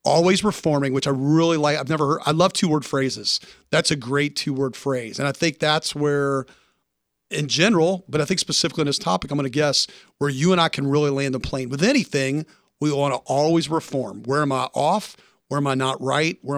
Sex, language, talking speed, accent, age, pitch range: male, English, 230 wpm, American, 40-59, 140-165 Hz